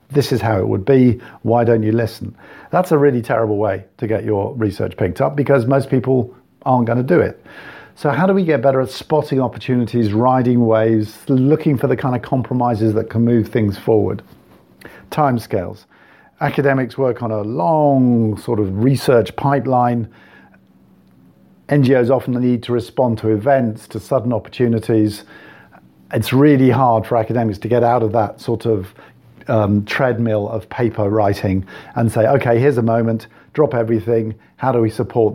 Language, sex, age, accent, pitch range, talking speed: English, male, 50-69, British, 110-130 Hz, 170 wpm